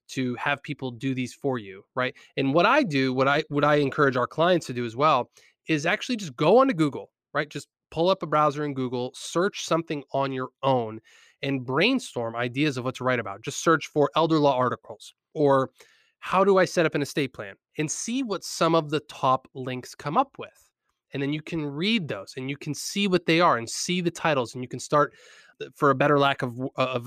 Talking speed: 230 wpm